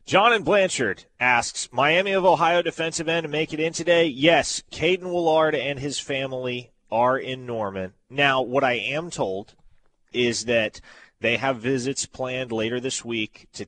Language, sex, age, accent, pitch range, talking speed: English, male, 30-49, American, 105-135 Hz, 165 wpm